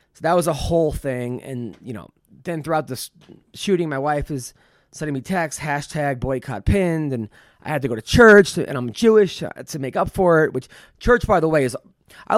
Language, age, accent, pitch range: English, 20-39, American, 135-175 Hz